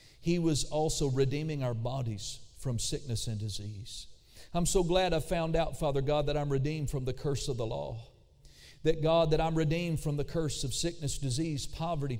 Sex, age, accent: male, 50-69, American